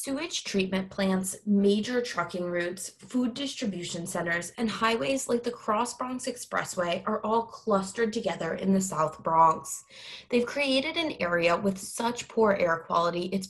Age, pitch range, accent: 20-39, 175-230 Hz, American